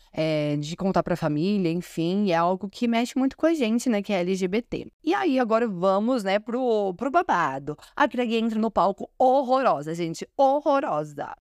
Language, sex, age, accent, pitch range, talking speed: Portuguese, female, 20-39, Brazilian, 190-260 Hz, 175 wpm